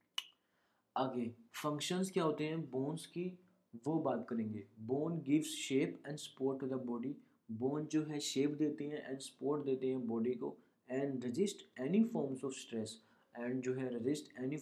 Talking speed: 170 wpm